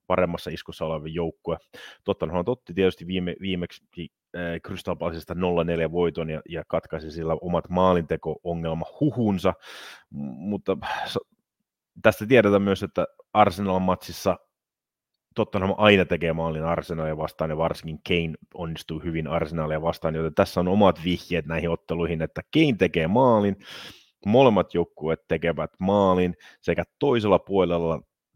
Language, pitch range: Finnish, 80-95 Hz